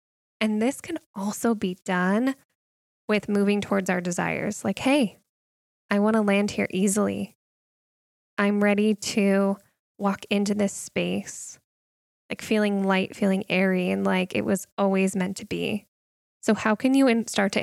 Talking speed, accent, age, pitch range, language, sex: 155 wpm, American, 10-29, 190-215 Hz, English, female